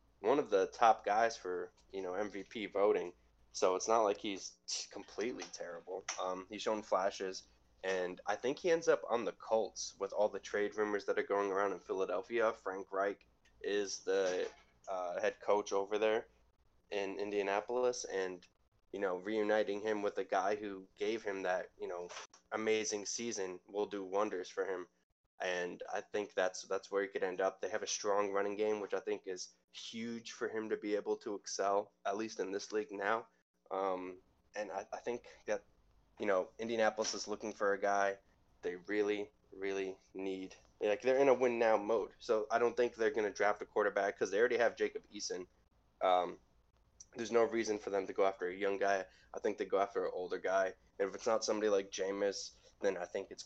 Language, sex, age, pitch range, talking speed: English, male, 10-29, 95-120 Hz, 200 wpm